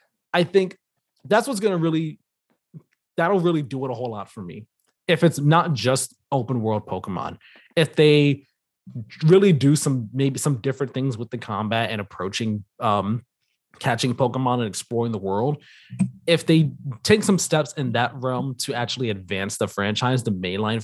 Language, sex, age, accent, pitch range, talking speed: English, male, 20-39, American, 120-160 Hz, 170 wpm